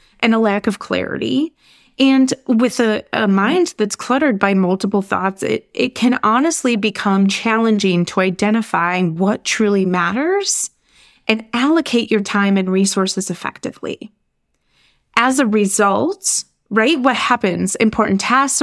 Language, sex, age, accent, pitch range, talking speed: English, female, 20-39, American, 195-250 Hz, 130 wpm